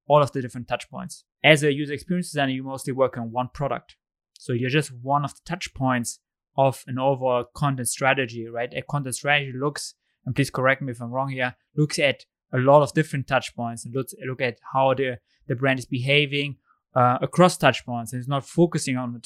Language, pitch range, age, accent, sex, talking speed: English, 125-145 Hz, 20-39, German, male, 220 wpm